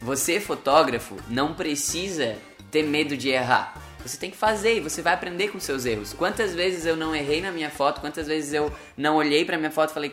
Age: 10-29